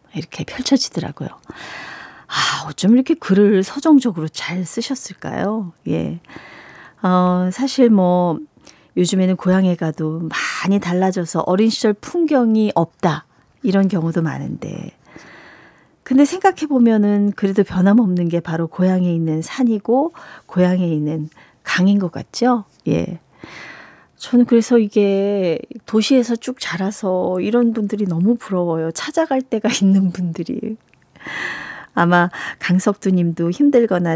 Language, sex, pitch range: Korean, female, 175-230 Hz